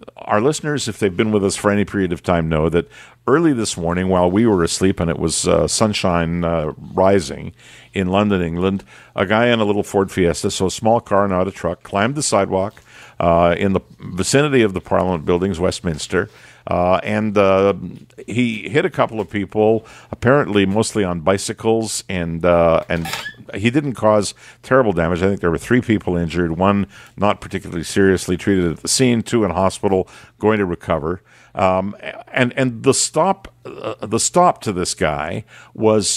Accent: American